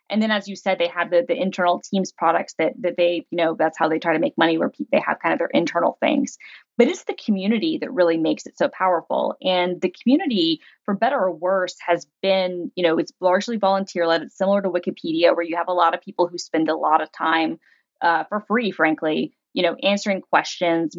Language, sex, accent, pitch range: English, female, American, 170-200 Hz